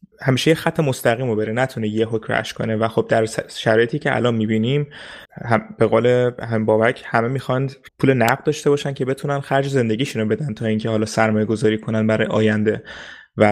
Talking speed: 180 wpm